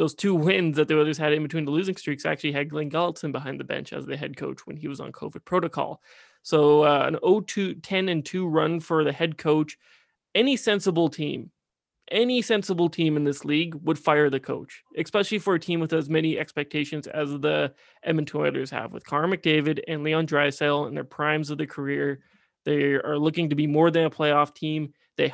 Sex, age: male, 20-39